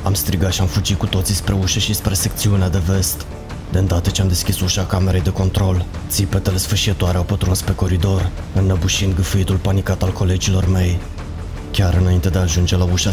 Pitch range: 90-95 Hz